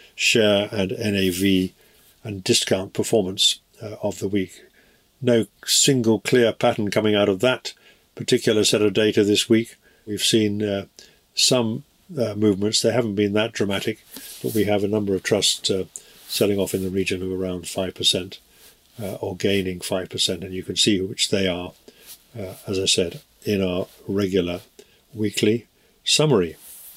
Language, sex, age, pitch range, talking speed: English, male, 50-69, 100-130 Hz, 155 wpm